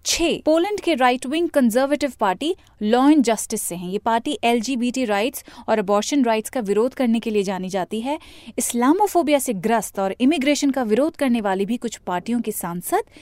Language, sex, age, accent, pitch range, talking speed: Hindi, female, 30-49, native, 215-285 Hz, 180 wpm